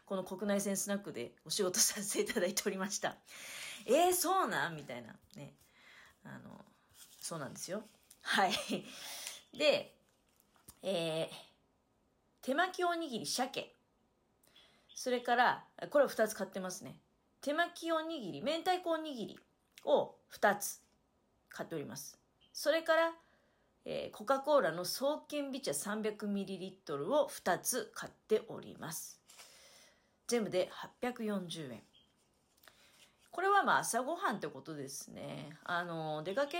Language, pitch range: Japanese, 185-290 Hz